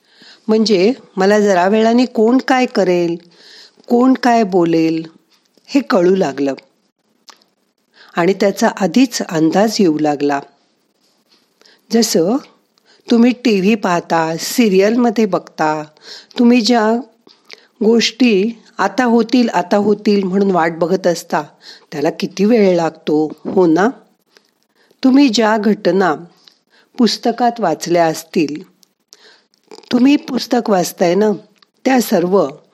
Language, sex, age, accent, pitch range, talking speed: Marathi, female, 50-69, native, 175-235 Hz, 105 wpm